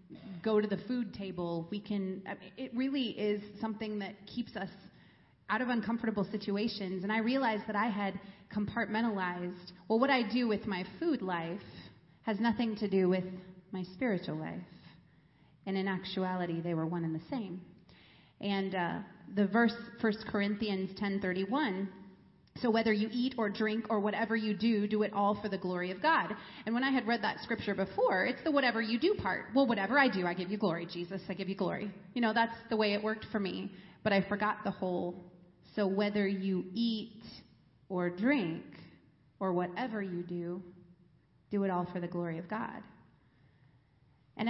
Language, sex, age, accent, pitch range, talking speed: English, female, 30-49, American, 185-220 Hz, 185 wpm